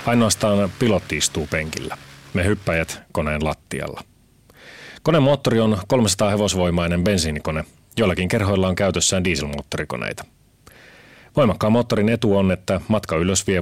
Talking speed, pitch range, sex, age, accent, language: 115 wpm, 85-110 Hz, male, 30-49, native, Finnish